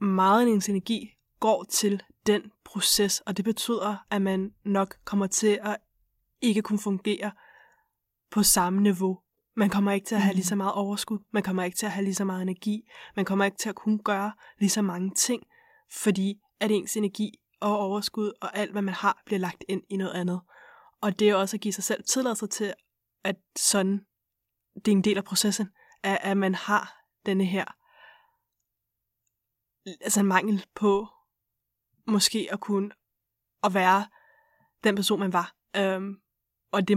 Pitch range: 185-210 Hz